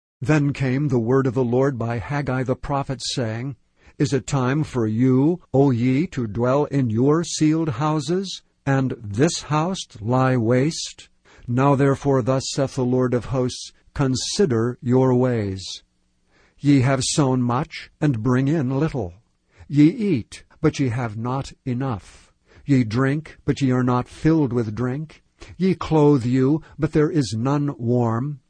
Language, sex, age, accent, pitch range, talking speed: English, male, 60-79, American, 120-150 Hz, 155 wpm